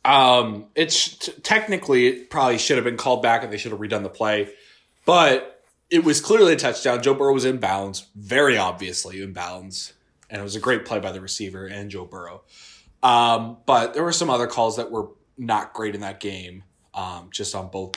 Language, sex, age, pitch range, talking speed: English, male, 20-39, 100-135 Hz, 205 wpm